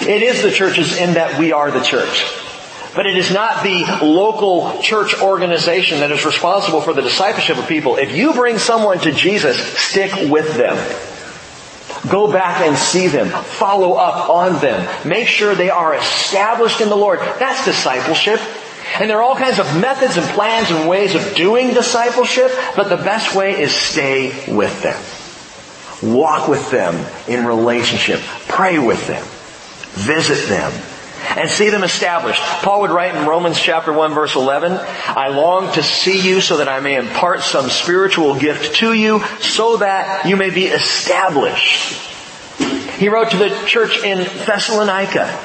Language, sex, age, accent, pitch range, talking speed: English, male, 40-59, American, 155-210 Hz, 170 wpm